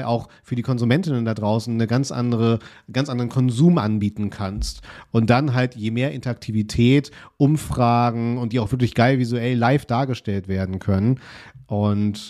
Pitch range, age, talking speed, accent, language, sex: 110-130 Hz, 40-59, 150 wpm, German, German, male